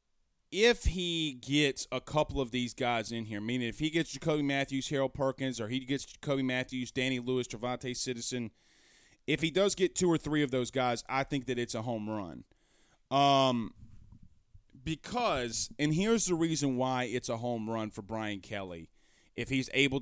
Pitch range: 120-155 Hz